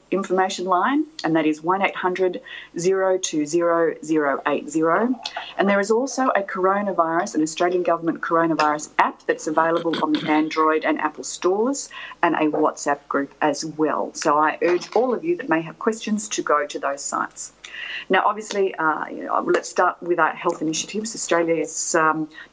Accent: Australian